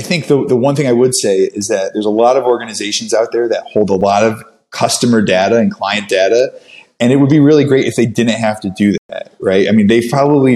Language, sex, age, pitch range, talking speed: English, male, 20-39, 100-130 Hz, 260 wpm